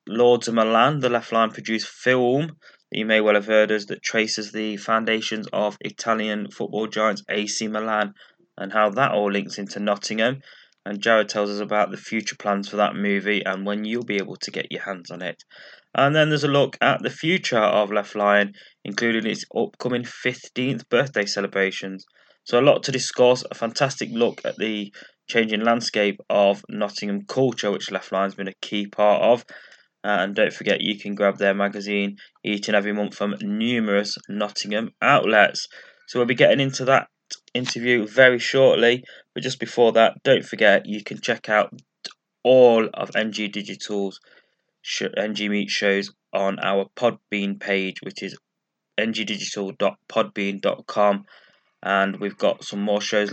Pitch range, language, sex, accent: 100-115 Hz, English, male, British